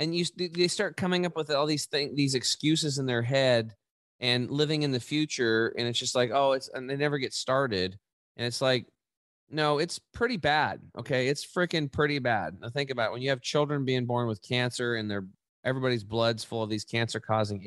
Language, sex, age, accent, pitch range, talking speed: English, male, 20-39, American, 110-145 Hz, 215 wpm